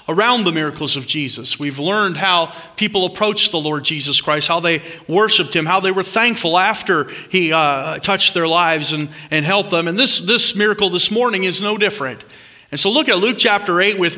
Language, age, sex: English, 40-59, male